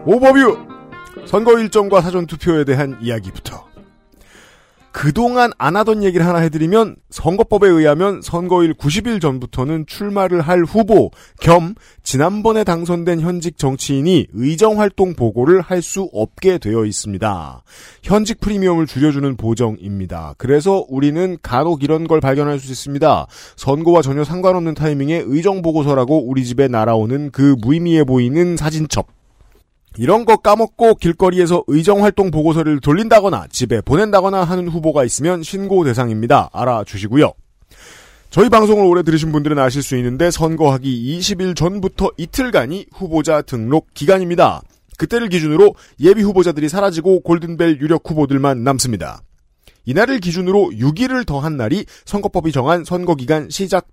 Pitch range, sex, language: 135-190 Hz, male, Korean